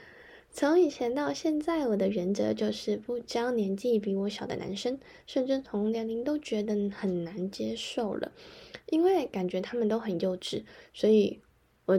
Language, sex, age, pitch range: Chinese, female, 10-29, 195-260 Hz